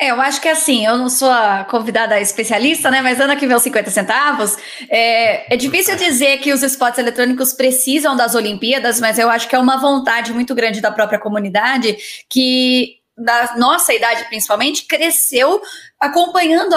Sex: female